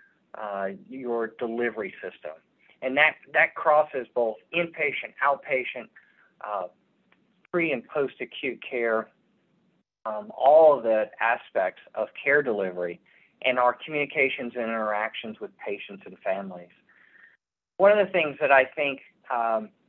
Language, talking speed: English, 125 wpm